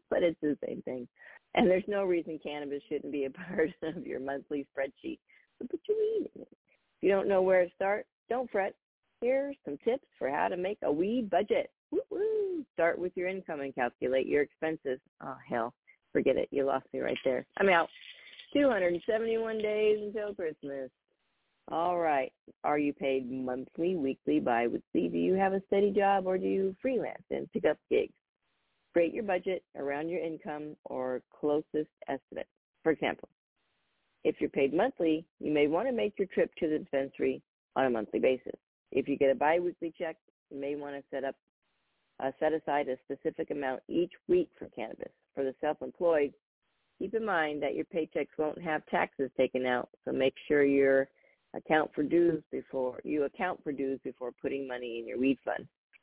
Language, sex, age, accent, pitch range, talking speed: English, female, 40-59, American, 140-195 Hz, 185 wpm